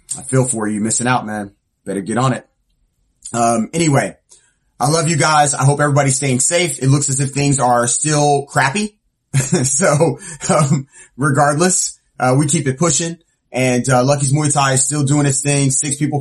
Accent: American